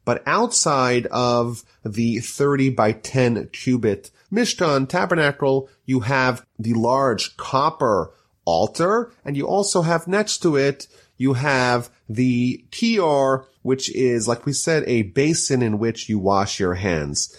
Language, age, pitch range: English, 30-49, 110-140 Hz